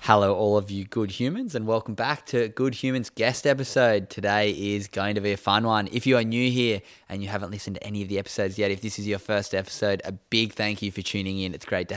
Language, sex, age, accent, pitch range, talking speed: English, male, 10-29, Australian, 95-110 Hz, 265 wpm